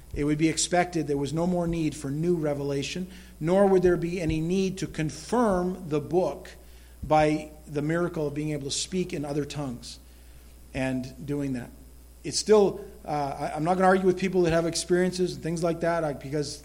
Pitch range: 140-175 Hz